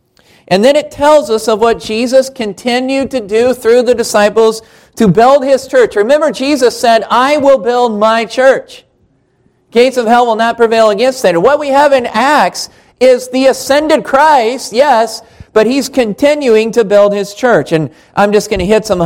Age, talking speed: 40-59, 185 wpm